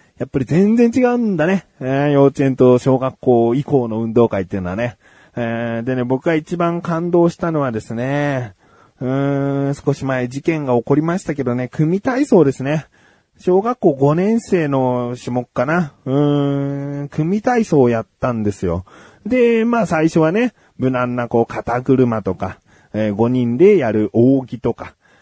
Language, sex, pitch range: Japanese, male, 115-155 Hz